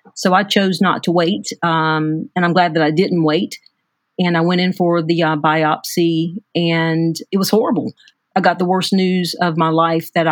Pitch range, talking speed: 165-180 Hz, 205 wpm